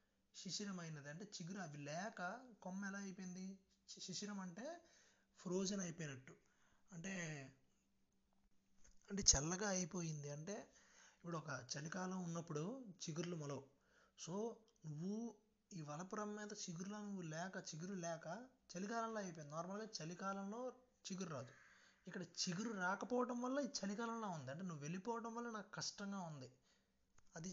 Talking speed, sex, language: 120 wpm, male, Telugu